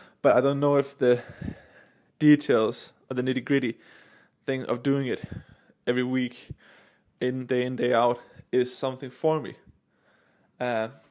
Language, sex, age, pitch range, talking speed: English, male, 20-39, 120-140 Hz, 140 wpm